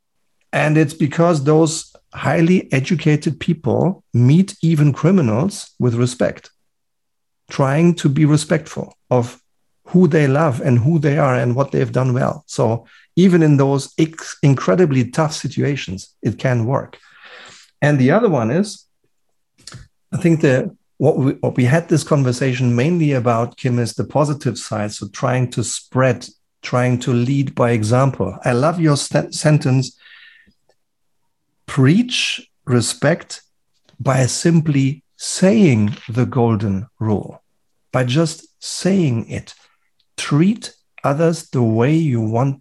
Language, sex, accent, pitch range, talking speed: German, male, German, 125-165 Hz, 130 wpm